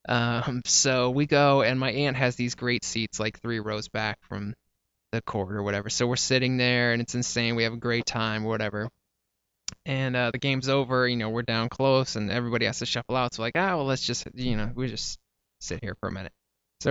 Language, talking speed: English, 230 wpm